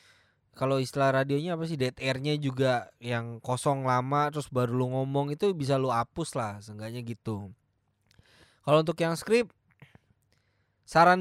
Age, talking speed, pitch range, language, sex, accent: 20-39, 140 wpm, 115-145 Hz, Indonesian, male, native